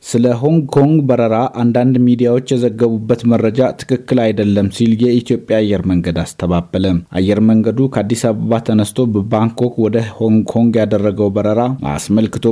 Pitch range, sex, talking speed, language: 110-120 Hz, male, 115 wpm, Amharic